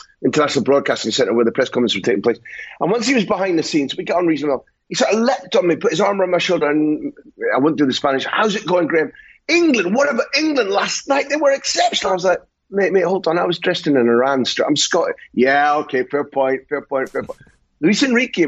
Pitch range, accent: 140-195 Hz, British